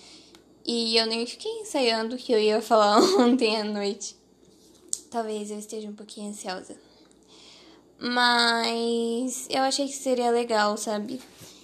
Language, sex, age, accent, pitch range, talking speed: Portuguese, female, 10-29, Brazilian, 215-255 Hz, 135 wpm